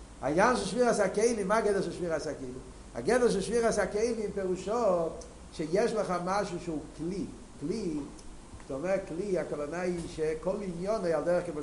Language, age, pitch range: Hebrew, 50-69, 170-220 Hz